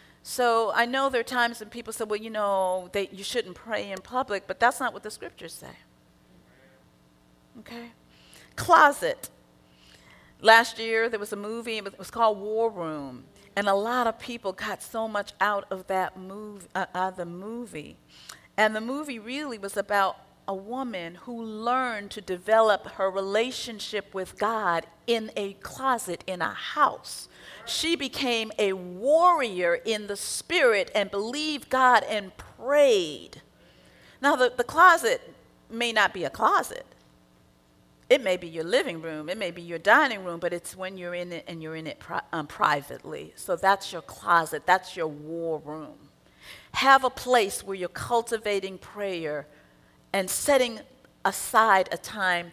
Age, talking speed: 40-59, 160 wpm